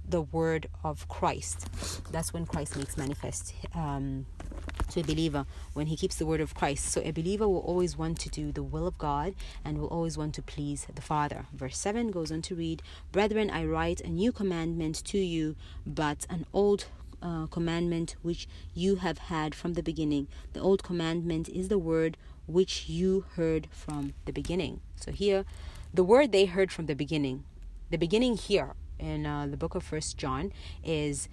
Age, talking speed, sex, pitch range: 30-49, 190 wpm, female, 140-175 Hz